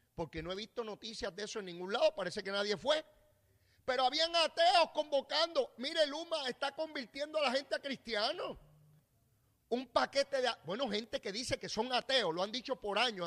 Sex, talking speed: male, 190 wpm